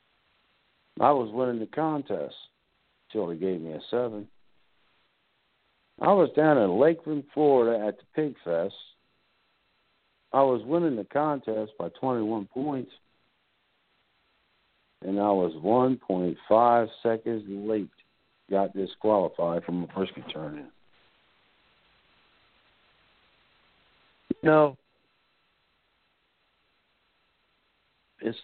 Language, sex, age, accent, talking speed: English, male, 60-79, American, 95 wpm